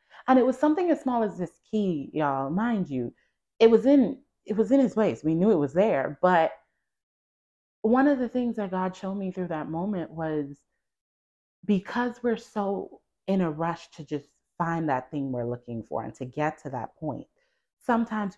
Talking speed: 195 wpm